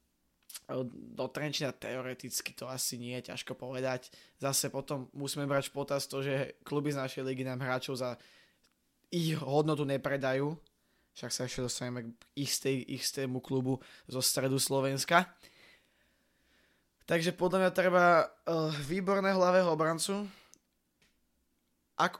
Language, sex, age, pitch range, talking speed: Slovak, male, 20-39, 130-155 Hz, 120 wpm